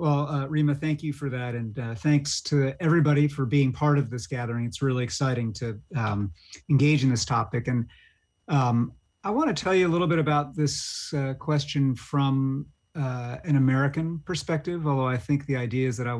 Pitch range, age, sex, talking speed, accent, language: 120-140 Hz, 40-59, male, 195 wpm, American, English